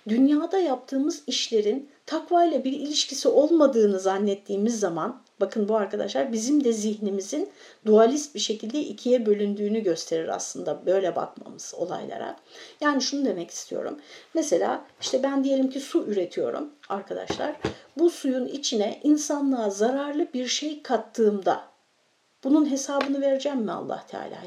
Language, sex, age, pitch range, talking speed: Turkish, female, 60-79, 220-295 Hz, 125 wpm